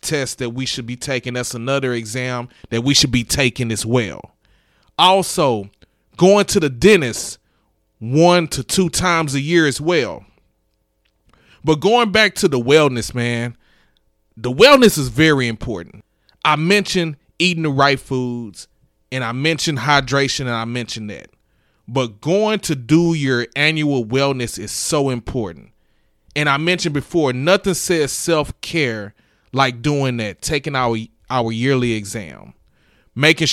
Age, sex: 30-49, male